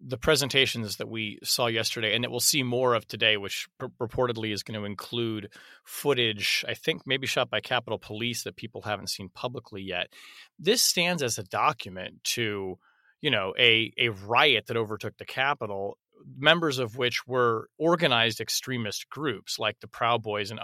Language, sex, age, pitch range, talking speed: English, male, 30-49, 110-130 Hz, 175 wpm